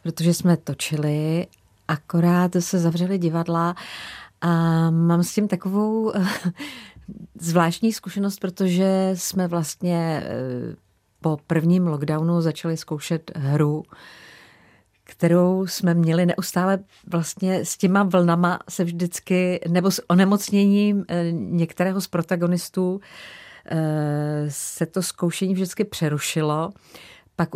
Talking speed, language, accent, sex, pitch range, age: 100 wpm, Czech, native, female, 160-180 Hz, 40-59